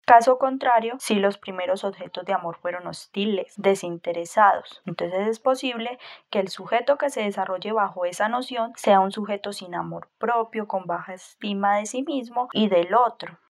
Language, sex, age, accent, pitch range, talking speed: Spanish, female, 10-29, Colombian, 195-230 Hz, 170 wpm